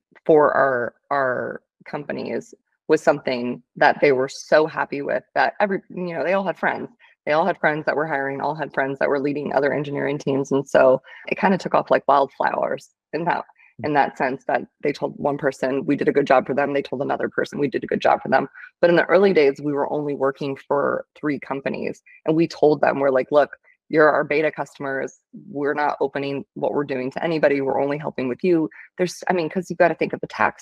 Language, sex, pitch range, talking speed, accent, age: English, female, 140-170 Hz, 235 wpm, American, 20-39